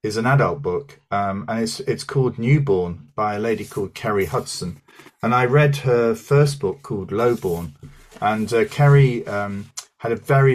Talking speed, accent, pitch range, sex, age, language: 175 wpm, British, 100-140 Hz, male, 40-59, English